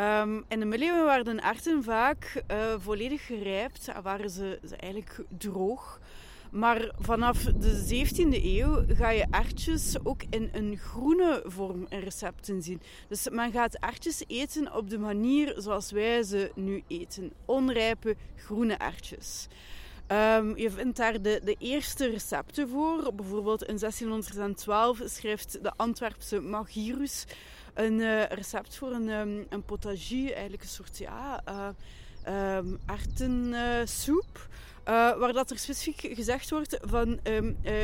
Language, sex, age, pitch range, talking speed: Dutch, female, 20-39, 205-250 Hz, 140 wpm